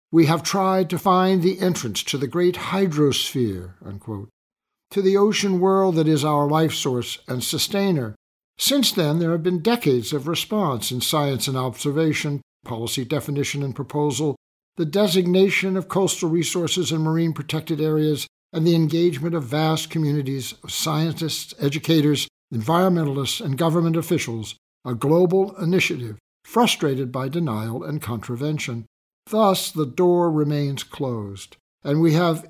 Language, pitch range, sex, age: English, 135-180 Hz, male, 60-79